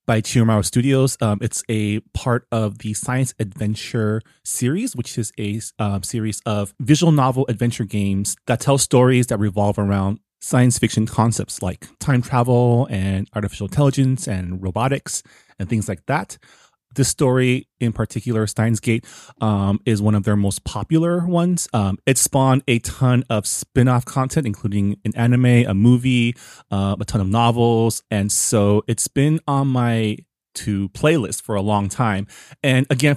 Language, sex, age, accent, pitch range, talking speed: English, male, 30-49, American, 100-125 Hz, 160 wpm